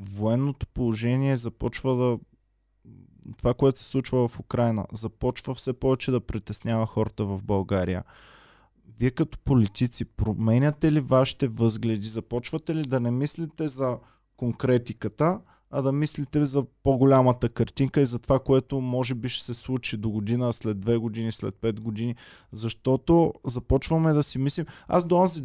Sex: male